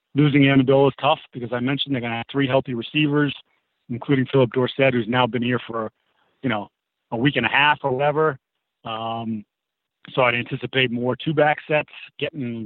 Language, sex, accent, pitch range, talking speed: English, male, American, 120-135 Hz, 185 wpm